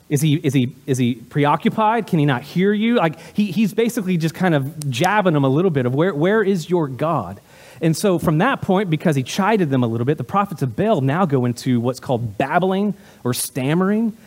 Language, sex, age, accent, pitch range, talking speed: English, male, 30-49, American, 130-180 Hz, 225 wpm